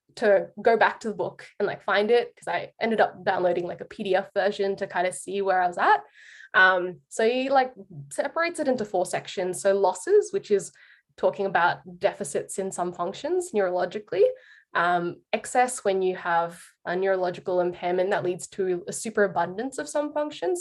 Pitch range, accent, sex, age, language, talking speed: 175-200 Hz, Australian, female, 10-29, English, 185 wpm